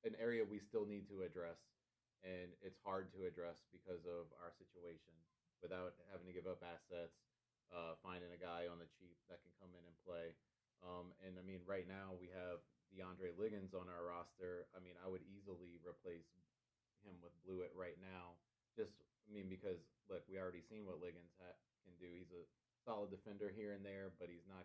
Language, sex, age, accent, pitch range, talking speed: English, male, 30-49, American, 90-100 Hz, 195 wpm